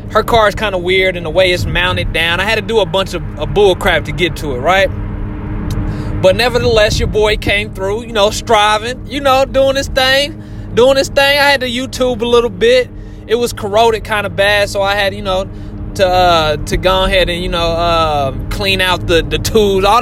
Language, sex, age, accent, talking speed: English, male, 20-39, American, 225 wpm